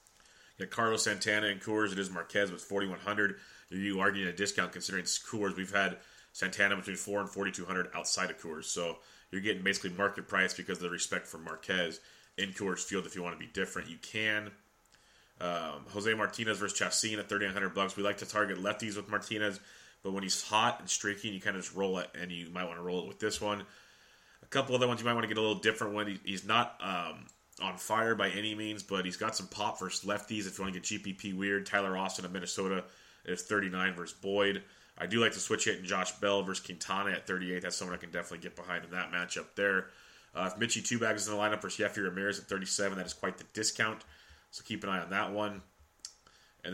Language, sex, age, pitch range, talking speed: English, male, 30-49, 90-105 Hz, 235 wpm